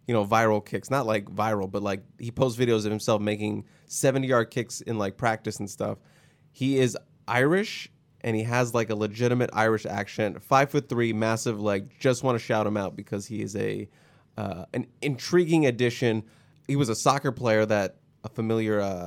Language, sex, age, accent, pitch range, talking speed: English, male, 20-39, American, 105-135 Hz, 195 wpm